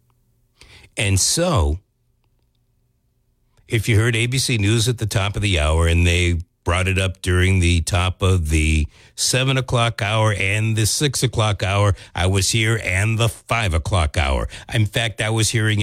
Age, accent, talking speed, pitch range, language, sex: 50-69, American, 165 wpm, 90-120 Hz, English, male